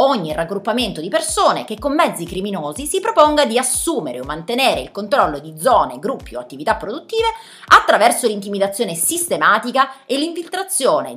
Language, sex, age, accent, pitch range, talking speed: Italian, female, 30-49, native, 150-215 Hz, 145 wpm